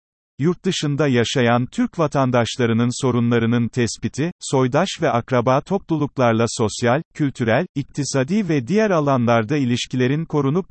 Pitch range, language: 120-155 Hz, Turkish